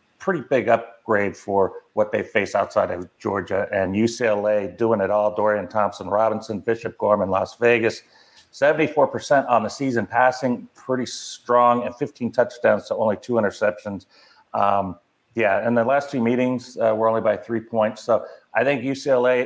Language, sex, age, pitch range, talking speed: English, male, 50-69, 105-125 Hz, 165 wpm